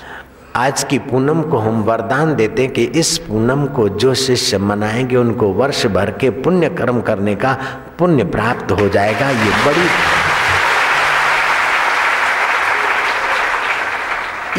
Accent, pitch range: native, 105-145 Hz